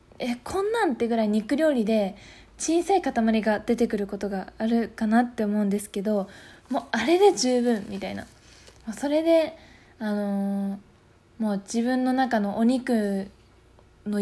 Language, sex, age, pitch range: Japanese, female, 20-39, 205-260 Hz